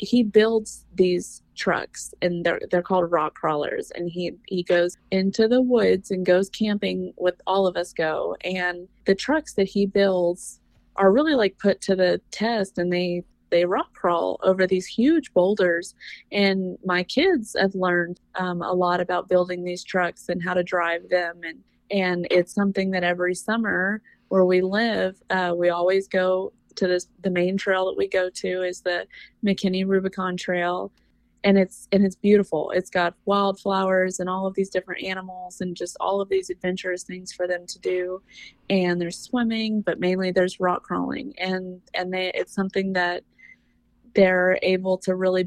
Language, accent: English, American